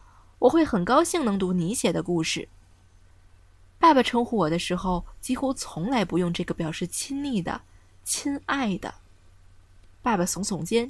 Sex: female